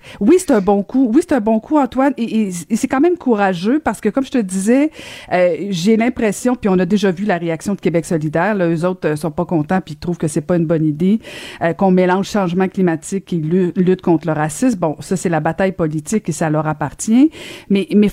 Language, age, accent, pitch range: French, 50-69, Canadian, 175-240 Hz